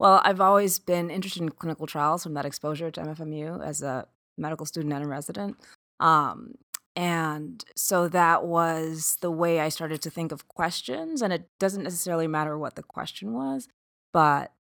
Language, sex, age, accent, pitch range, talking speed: English, female, 20-39, American, 155-190 Hz, 175 wpm